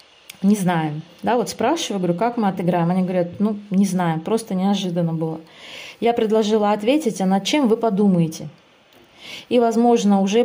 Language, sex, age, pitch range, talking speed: Russian, female, 20-39, 175-220 Hz, 160 wpm